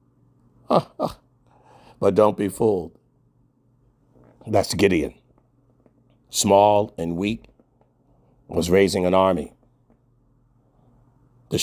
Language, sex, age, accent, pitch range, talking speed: English, male, 50-69, American, 105-130 Hz, 70 wpm